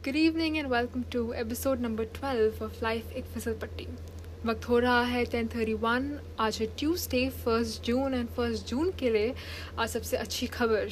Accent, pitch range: native, 210-260 Hz